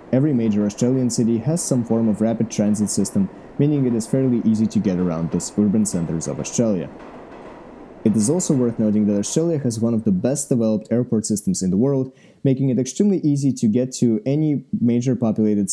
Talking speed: 200 wpm